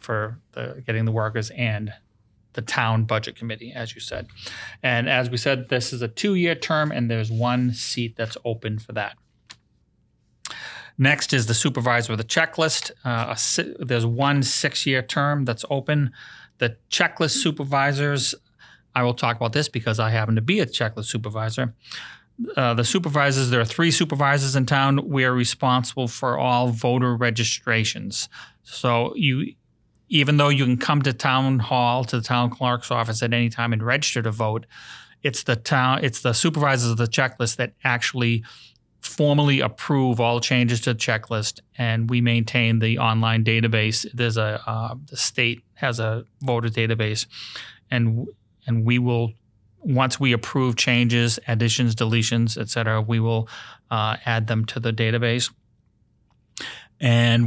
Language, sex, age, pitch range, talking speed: English, male, 30-49, 115-130 Hz, 160 wpm